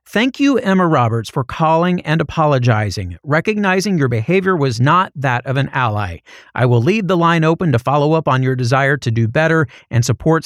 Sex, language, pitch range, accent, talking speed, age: male, English, 135-175 Hz, American, 195 wpm, 40-59